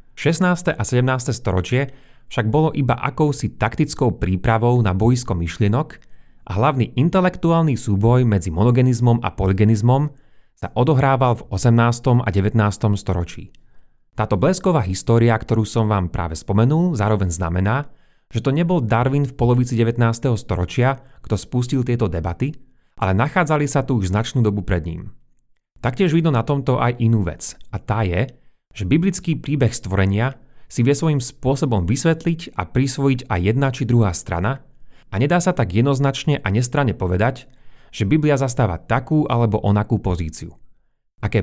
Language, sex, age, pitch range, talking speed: Slovak, male, 30-49, 105-135 Hz, 145 wpm